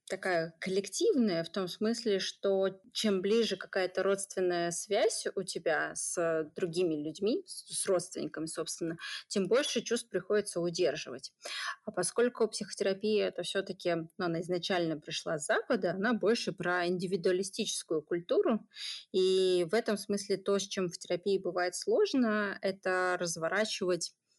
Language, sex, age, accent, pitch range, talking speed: Russian, female, 20-39, native, 170-205 Hz, 130 wpm